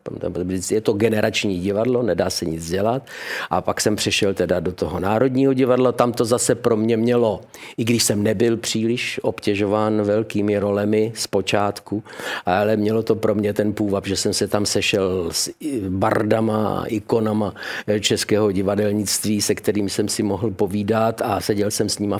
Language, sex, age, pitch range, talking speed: Czech, male, 50-69, 100-115 Hz, 165 wpm